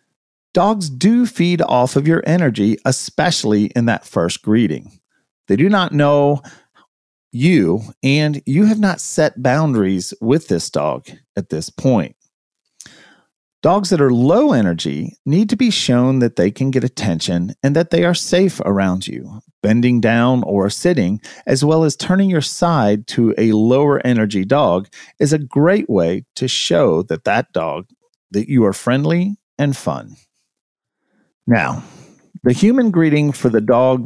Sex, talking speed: male, 155 wpm